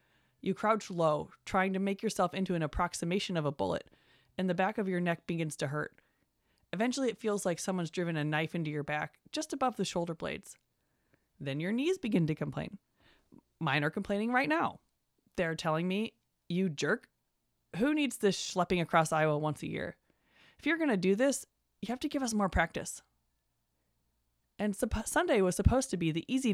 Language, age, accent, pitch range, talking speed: English, 20-39, American, 160-220 Hz, 190 wpm